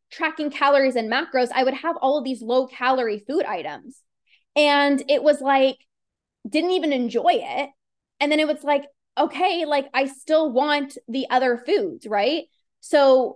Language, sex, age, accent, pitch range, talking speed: English, female, 20-39, American, 240-305 Hz, 165 wpm